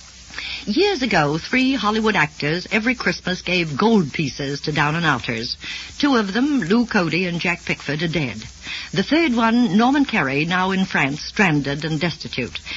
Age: 60-79